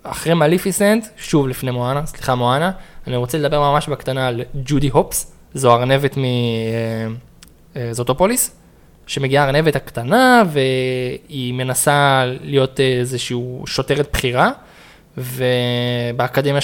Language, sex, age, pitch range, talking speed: Hebrew, male, 20-39, 125-150 Hz, 105 wpm